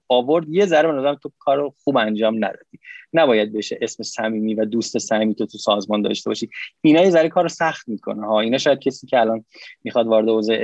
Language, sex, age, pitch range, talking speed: Persian, male, 20-39, 115-145 Hz, 195 wpm